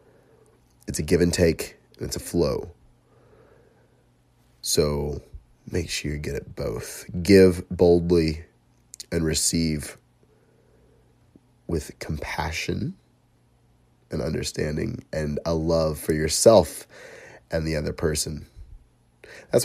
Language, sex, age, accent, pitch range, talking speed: English, male, 30-49, American, 80-95 Hz, 105 wpm